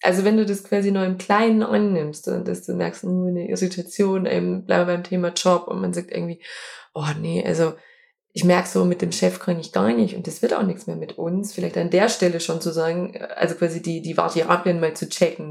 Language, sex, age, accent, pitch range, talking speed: German, female, 20-39, German, 170-210 Hz, 225 wpm